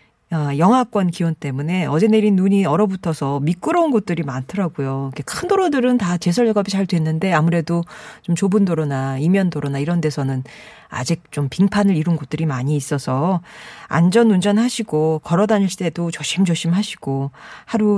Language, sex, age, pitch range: Korean, female, 40-59, 160-230 Hz